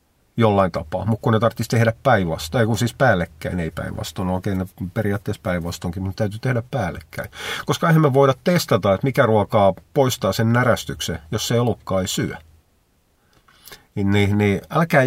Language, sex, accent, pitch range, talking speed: Finnish, male, native, 90-115 Hz, 170 wpm